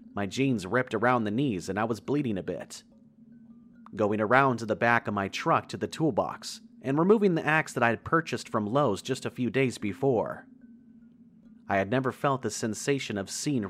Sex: male